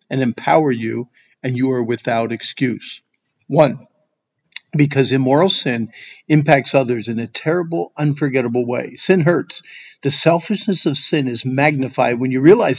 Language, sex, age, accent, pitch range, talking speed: English, male, 50-69, American, 140-170 Hz, 140 wpm